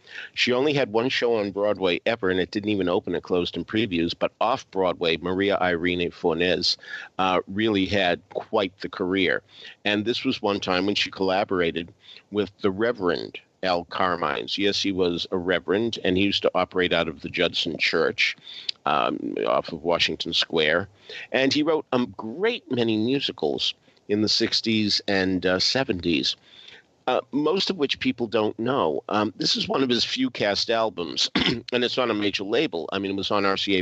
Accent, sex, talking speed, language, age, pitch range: American, male, 180 wpm, English, 50-69, 90-105 Hz